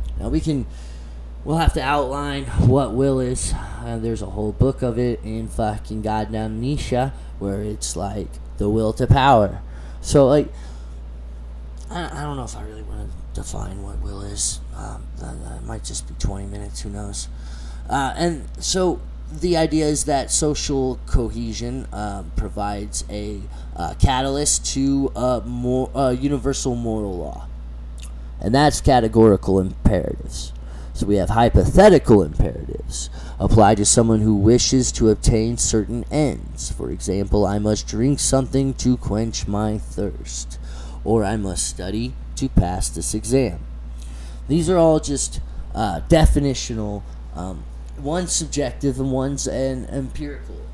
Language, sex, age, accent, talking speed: English, male, 20-39, American, 145 wpm